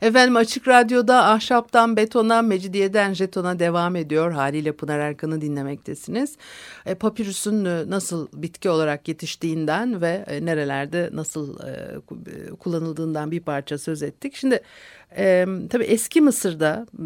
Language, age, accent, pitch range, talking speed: Turkish, 60-79, native, 150-195 Hz, 105 wpm